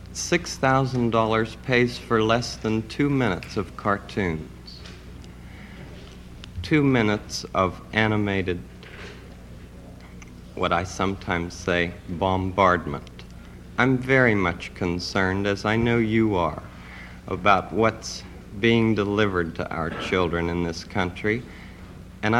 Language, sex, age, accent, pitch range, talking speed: English, male, 60-79, American, 90-125 Hz, 100 wpm